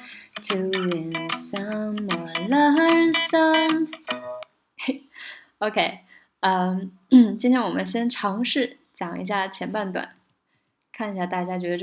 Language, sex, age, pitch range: Chinese, female, 20-39, 175-230 Hz